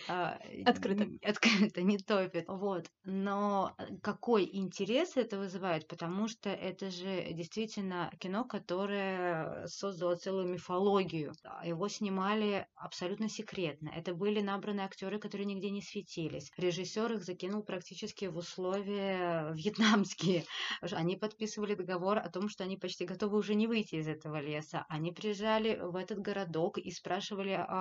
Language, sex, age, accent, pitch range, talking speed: Russian, female, 20-39, native, 175-205 Hz, 130 wpm